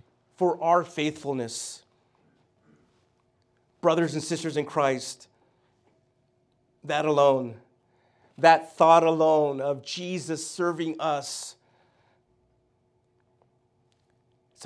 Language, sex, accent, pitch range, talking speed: English, male, American, 120-160 Hz, 75 wpm